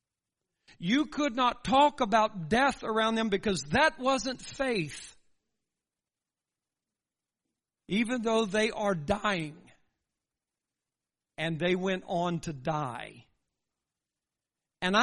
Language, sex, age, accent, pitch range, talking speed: English, male, 60-79, American, 170-280 Hz, 95 wpm